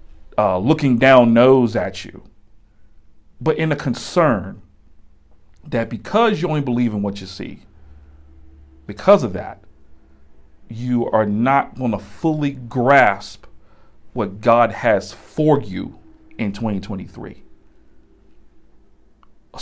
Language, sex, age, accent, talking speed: English, male, 40-59, American, 115 wpm